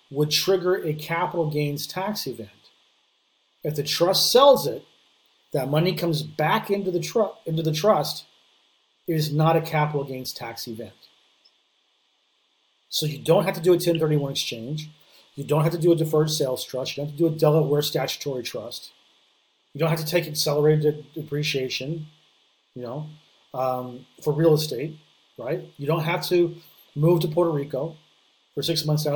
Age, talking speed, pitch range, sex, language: 30-49, 165 wpm, 145-165 Hz, male, English